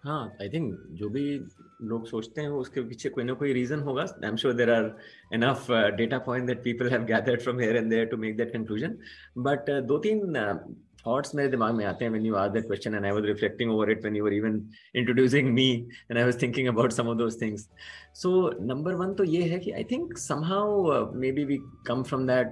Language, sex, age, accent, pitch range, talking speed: English, male, 30-49, Indian, 110-140 Hz, 205 wpm